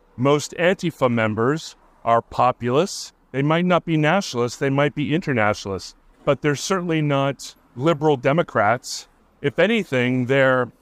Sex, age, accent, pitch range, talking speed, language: male, 40-59, American, 120-160 Hz, 130 wpm, English